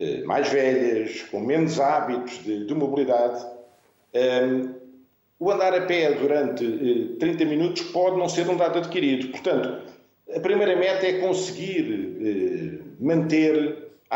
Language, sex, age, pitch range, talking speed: Portuguese, male, 50-69, 130-190 Hz, 125 wpm